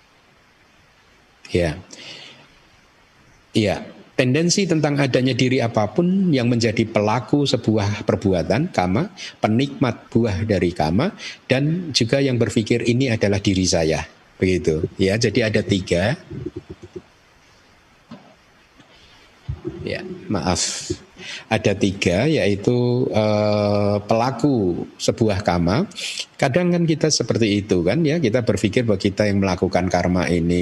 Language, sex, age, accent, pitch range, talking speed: Indonesian, male, 50-69, native, 95-115 Hz, 105 wpm